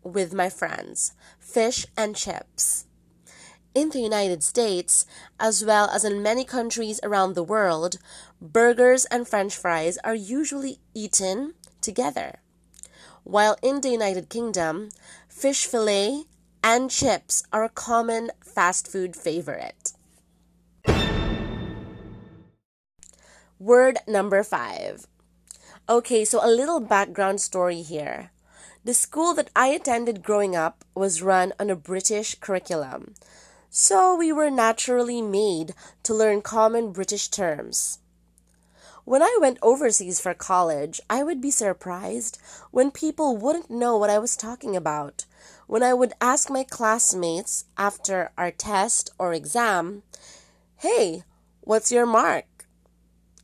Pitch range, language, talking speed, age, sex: 185-240 Hz, English, 120 wpm, 20-39, female